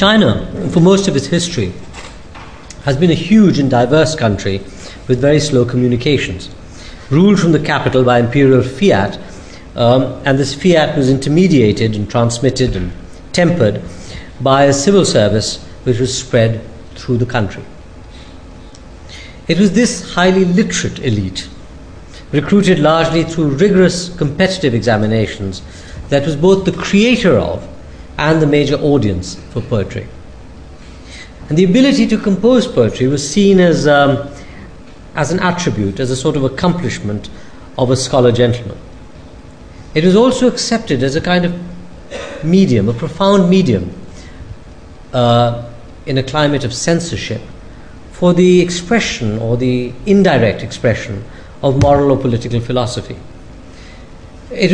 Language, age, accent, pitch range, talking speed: English, 50-69, Indian, 105-175 Hz, 135 wpm